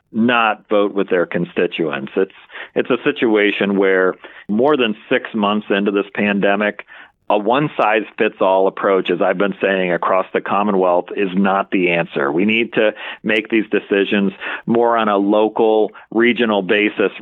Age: 40-59